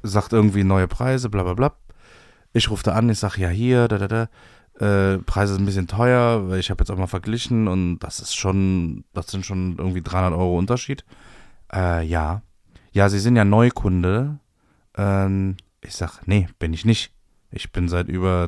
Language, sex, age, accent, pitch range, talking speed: German, male, 20-39, German, 95-120 Hz, 190 wpm